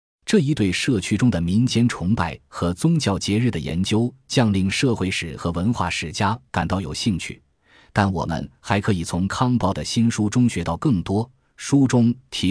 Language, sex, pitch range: Chinese, male, 85-115 Hz